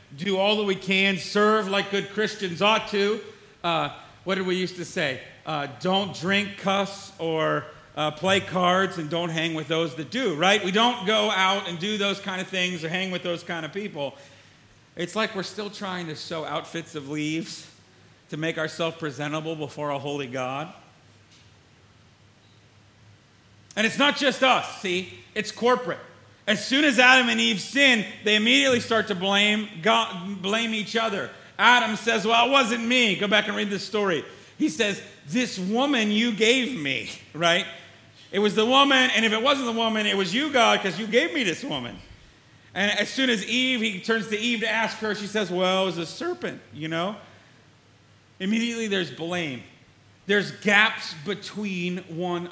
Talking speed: 185 wpm